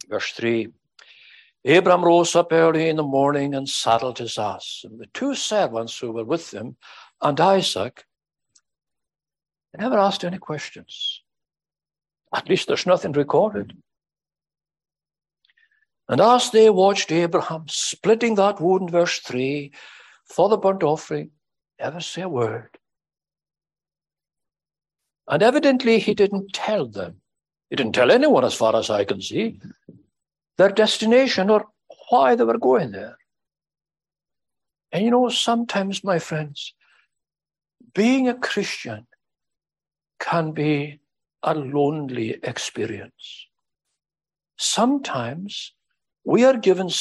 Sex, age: male, 60-79